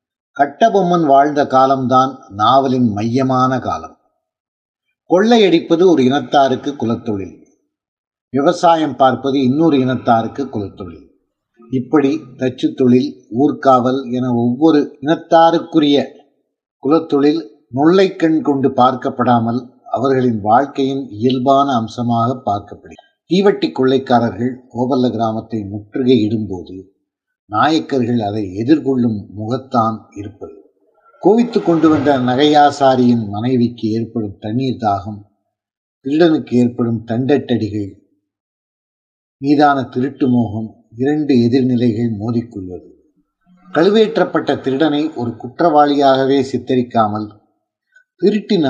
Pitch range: 120-150 Hz